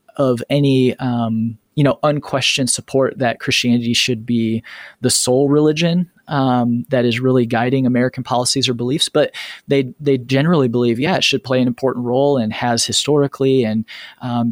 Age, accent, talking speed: 20-39, American, 165 wpm